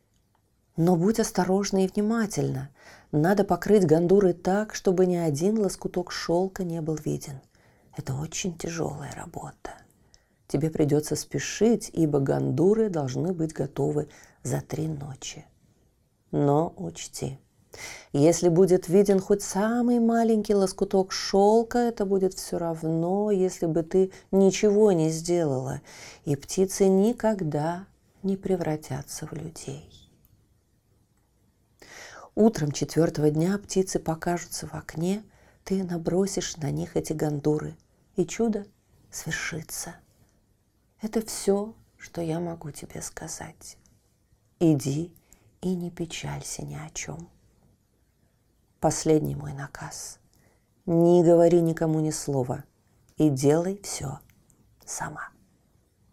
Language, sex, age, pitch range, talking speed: Russian, female, 40-59, 145-190 Hz, 110 wpm